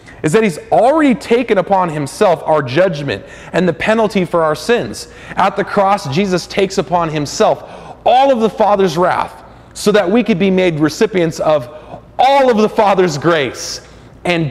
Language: English